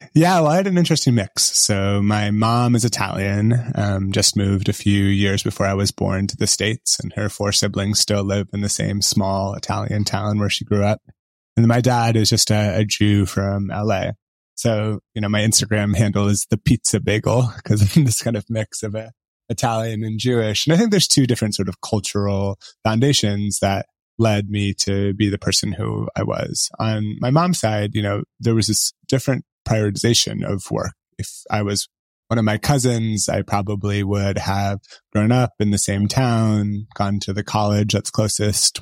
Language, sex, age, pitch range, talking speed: English, male, 20-39, 100-115 Hz, 200 wpm